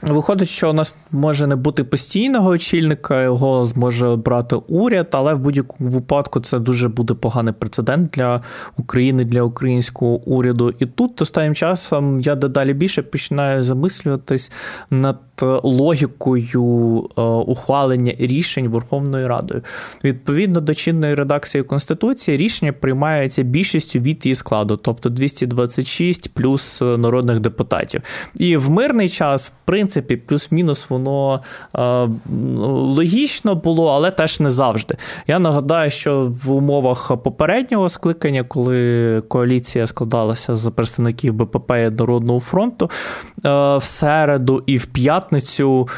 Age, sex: 20-39, male